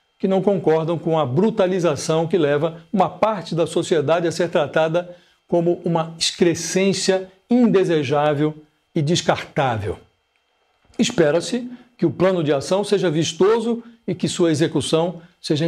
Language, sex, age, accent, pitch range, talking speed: Portuguese, male, 60-79, Brazilian, 150-185 Hz, 130 wpm